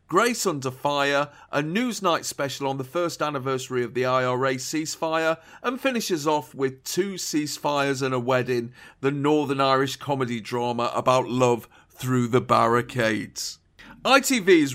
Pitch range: 130-165 Hz